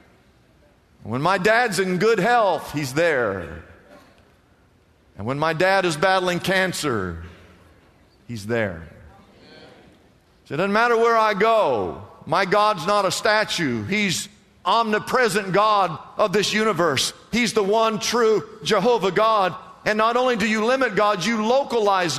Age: 50-69